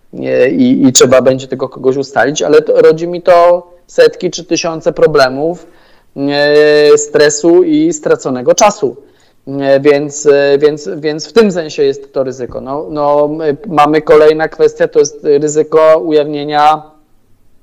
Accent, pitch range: native, 140-170 Hz